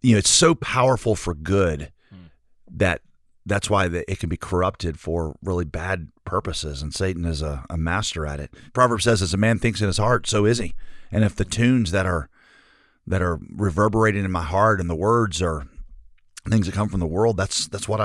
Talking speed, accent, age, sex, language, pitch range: 210 wpm, American, 40-59, male, English, 85-105 Hz